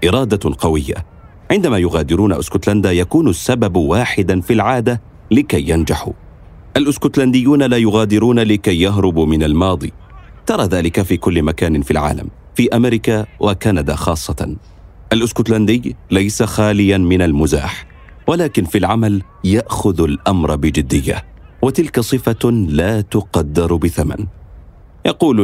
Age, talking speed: 40-59, 110 wpm